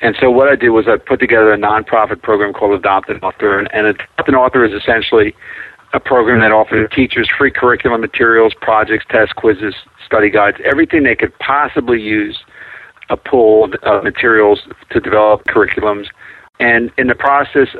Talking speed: 170 wpm